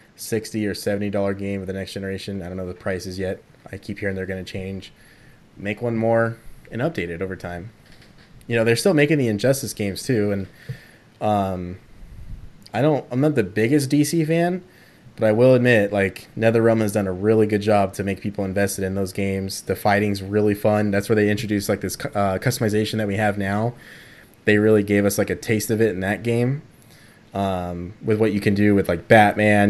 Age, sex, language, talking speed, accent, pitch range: 20-39, male, English, 215 wpm, American, 100-115 Hz